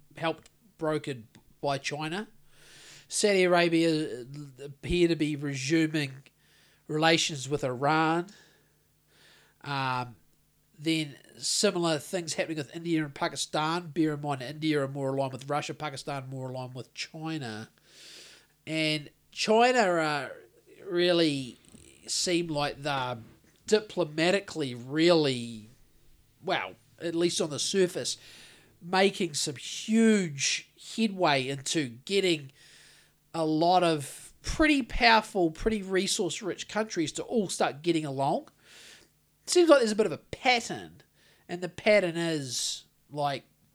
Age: 40-59